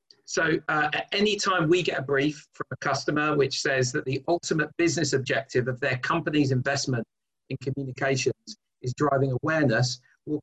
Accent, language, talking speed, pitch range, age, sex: British, English, 155 wpm, 130-160 Hz, 40-59, male